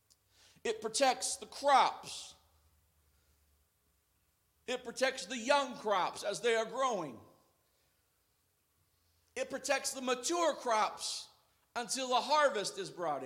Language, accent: English, American